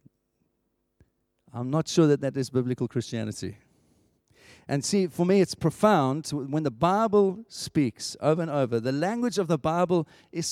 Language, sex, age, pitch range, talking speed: English, male, 50-69, 135-185 Hz, 155 wpm